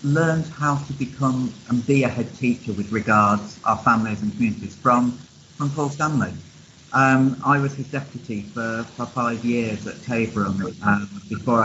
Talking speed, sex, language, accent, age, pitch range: 160 wpm, male, English, British, 40-59, 115-140 Hz